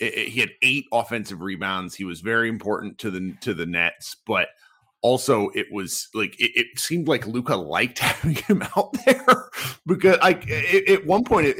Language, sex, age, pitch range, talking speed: English, male, 30-49, 110-150 Hz, 180 wpm